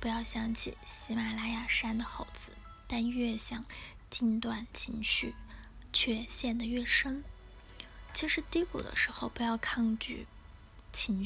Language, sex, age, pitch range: Chinese, female, 10-29, 230-260 Hz